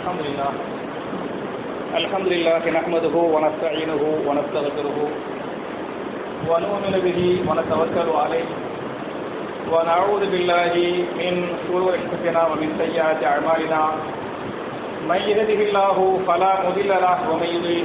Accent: Indian